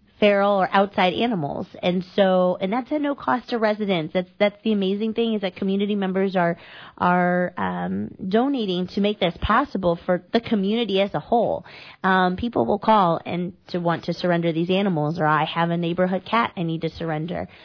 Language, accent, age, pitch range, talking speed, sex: English, American, 30-49, 175-210 Hz, 195 wpm, female